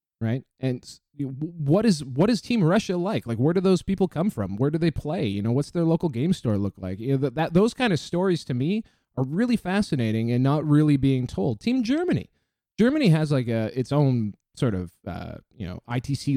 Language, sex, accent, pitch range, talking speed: English, male, American, 120-170 Hz, 215 wpm